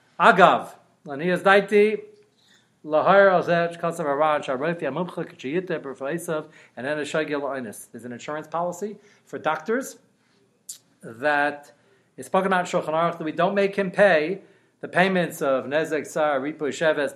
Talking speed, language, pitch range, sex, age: 155 wpm, English, 155-200 Hz, male, 40-59